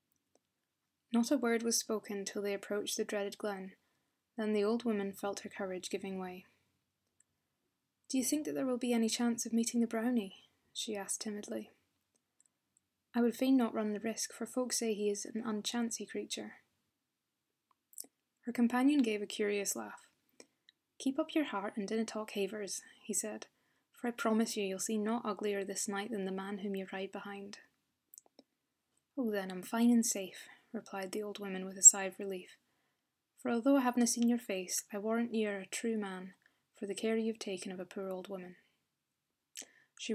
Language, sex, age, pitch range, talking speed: English, female, 20-39, 195-230 Hz, 185 wpm